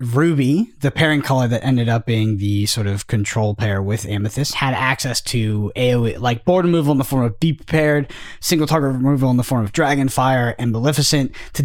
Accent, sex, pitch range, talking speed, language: American, male, 120-160 Hz, 205 wpm, English